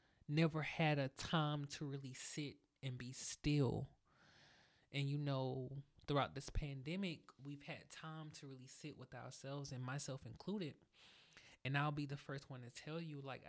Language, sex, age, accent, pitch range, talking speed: English, male, 20-39, American, 130-150 Hz, 165 wpm